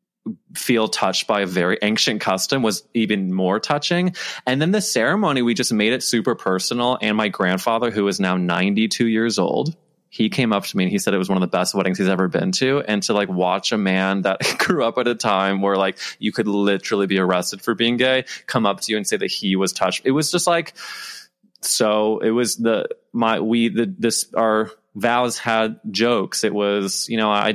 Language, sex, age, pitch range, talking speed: English, male, 20-39, 100-145 Hz, 220 wpm